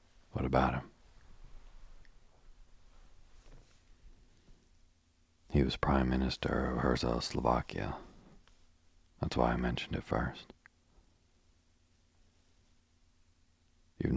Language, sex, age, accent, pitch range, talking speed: English, male, 40-59, American, 65-85 Hz, 70 wpm